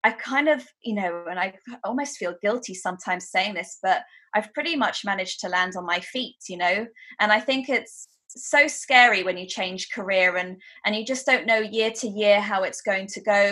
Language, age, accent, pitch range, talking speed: English, 20-39, British, 185-235 Hz, 220 wpm